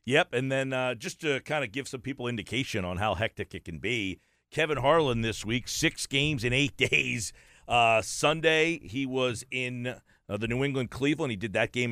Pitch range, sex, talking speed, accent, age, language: 110-150 Hz, male, 200 wpm, American, 50-69, English